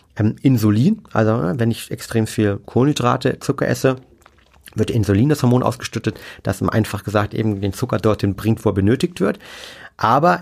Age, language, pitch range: 30-49, German, 115-145 Hz